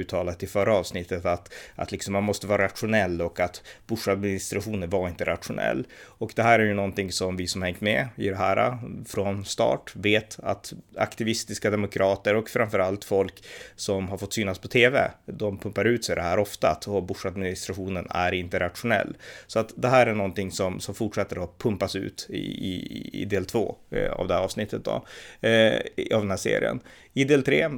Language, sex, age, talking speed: Swedish, male, 30-49, 190 wpm